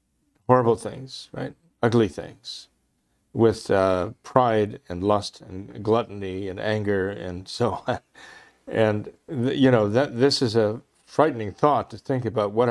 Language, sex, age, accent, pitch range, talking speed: English, male, 50-69, American, 105-125 Hz, 145 wpm